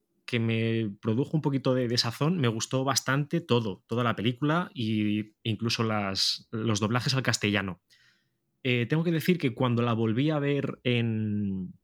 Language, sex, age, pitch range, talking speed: Spanish, male, 20-39, 110-135 Hz, 155 wpm